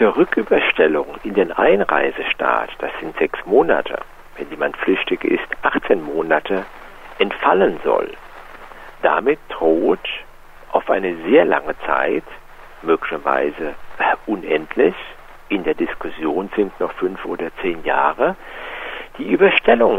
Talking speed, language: 110 wpm, German